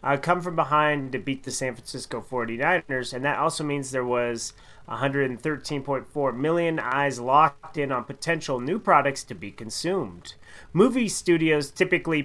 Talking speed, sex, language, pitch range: 150 wpm, male, English, 135-170 Hz